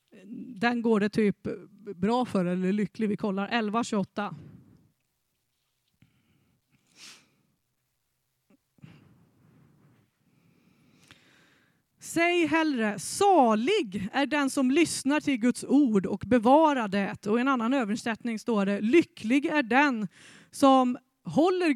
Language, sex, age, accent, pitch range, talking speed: Swedish, female, 30-49, native, 205-275 Hz, 100 wpm